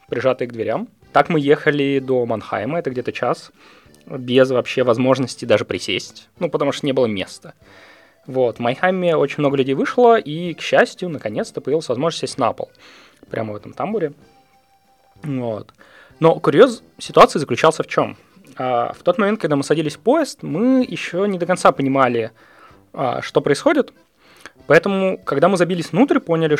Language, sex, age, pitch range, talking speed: Russian, male, 20-39, 130-200 Hz, 160 wpm